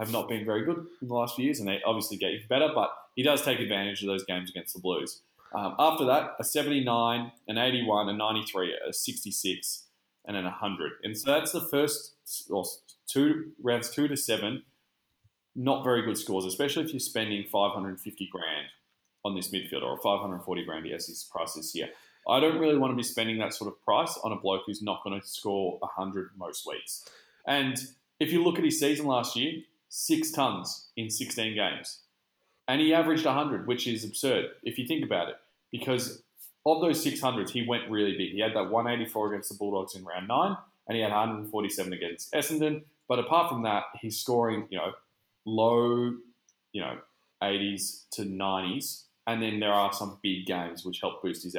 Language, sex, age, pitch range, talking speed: English, male, 20-39, 100-130 Hz, 200 wpm